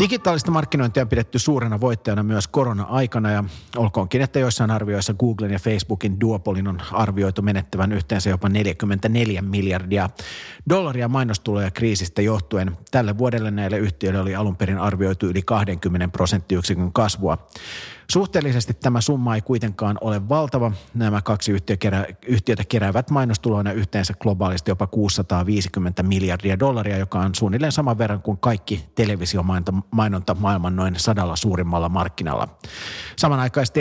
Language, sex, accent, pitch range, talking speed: Finnish, male, native, 95-115 Hz, 130 wpm